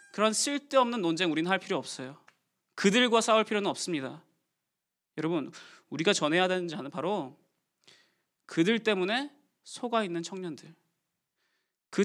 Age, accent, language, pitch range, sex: 20-39, native, Korean, 170-220 Hz, male